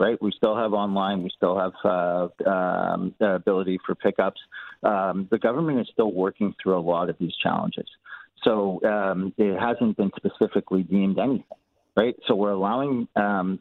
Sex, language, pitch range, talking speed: male, English, 95-115 Hz, 170 wpm